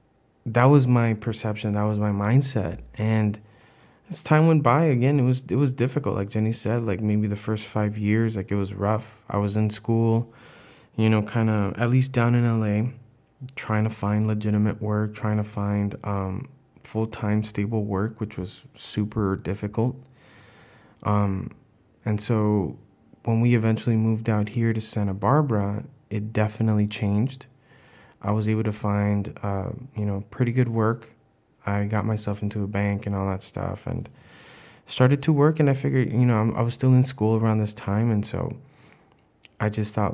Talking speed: 180 wpm